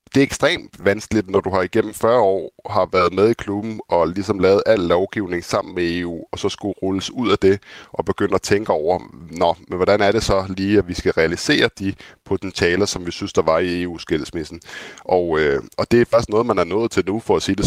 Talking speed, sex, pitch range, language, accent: 240 wpm, male, 85-100 Hz, Danish, native